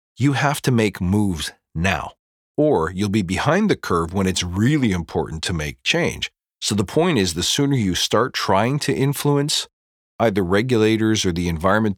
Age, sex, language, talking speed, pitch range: 40-59, male, English, 175 wpm, 90-120 Hz